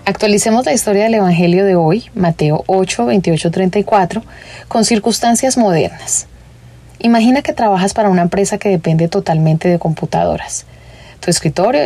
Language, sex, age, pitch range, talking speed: English, female, 30-49, 165-205 Hz, 135 wpm